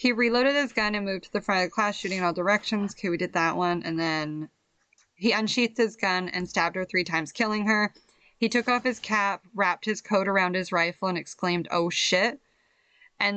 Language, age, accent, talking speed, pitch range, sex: English, 20-39, American, 225 wpm, 170-205 Hz, female